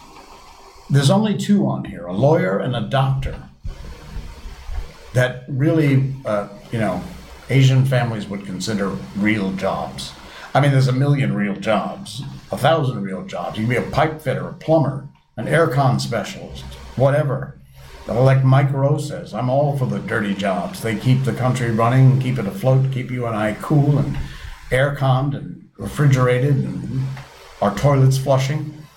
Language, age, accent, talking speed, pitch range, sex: English, 60-79, American, 160 wpm, 100-140 Hz, male